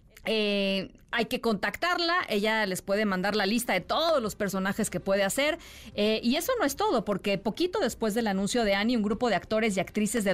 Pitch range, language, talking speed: 195-240 Hz, Spanish, 215 wpm